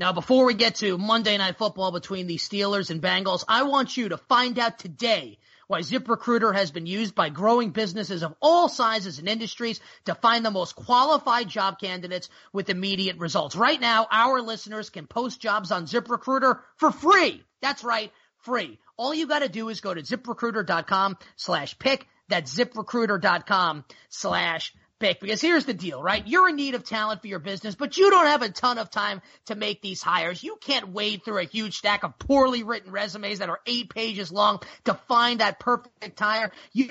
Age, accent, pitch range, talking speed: 30-49, American, 195-245 Hz, 190 wpm